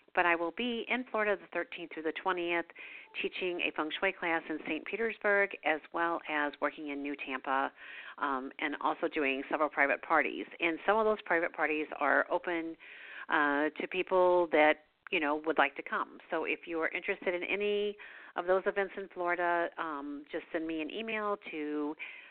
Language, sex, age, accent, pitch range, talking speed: English, female, 50-69, American, 150-185 Hz, 190 wpm